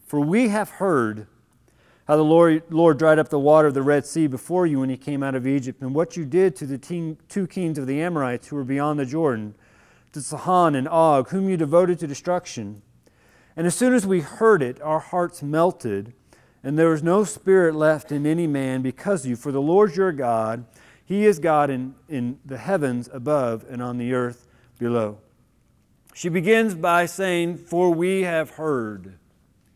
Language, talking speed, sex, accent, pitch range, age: English, 195 wpm, male, American, 140-180 Hz, 40-59